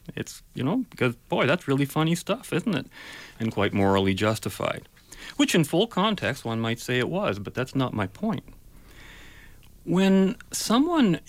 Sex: male